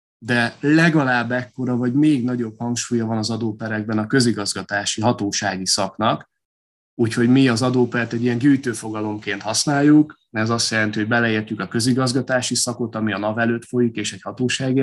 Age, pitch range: 30-49, 105-125 Hz